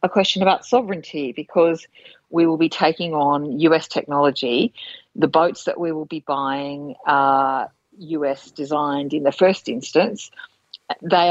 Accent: Australian